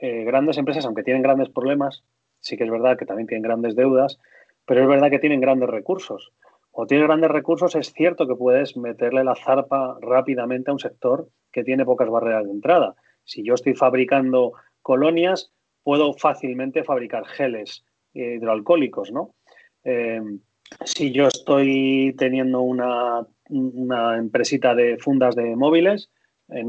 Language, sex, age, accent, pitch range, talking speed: Spanish, male, 30-49, Spanish, 125-150 Hz, 155 wpm